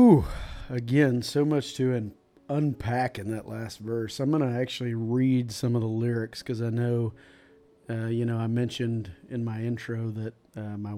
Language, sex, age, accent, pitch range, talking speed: English, male, 40-59, American, 110-125 Hz, 175 wpm